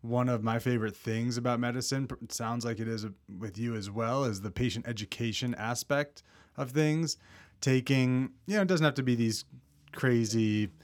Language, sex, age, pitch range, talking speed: English, male, 30-49, 100-125 Hz, 175 wpm